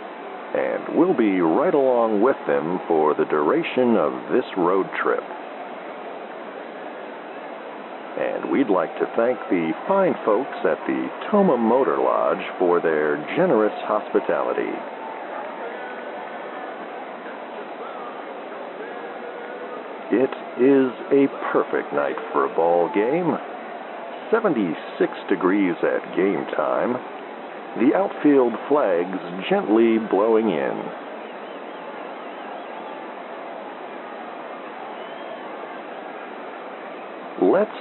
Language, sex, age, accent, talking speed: English, male, 50-69, American, 85 wpm